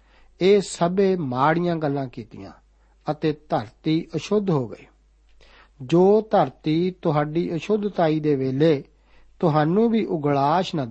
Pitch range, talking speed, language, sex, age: 135-170 Hz, 110 wpm, Punjabi, male, 60-79